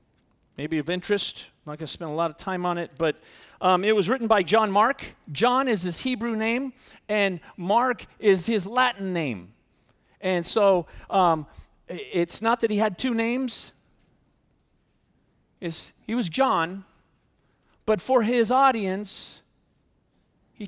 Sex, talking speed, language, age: male, 140 wpm, English, 40-59